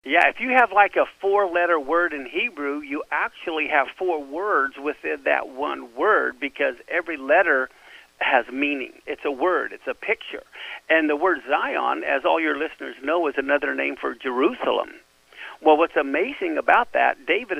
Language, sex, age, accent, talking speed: English, male, 50-69, American, 170 wpm